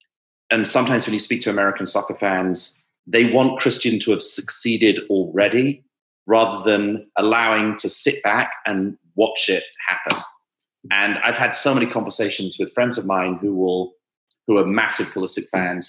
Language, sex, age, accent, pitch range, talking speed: English, male, 30-49, British, 95-120 Hz, 160 wpm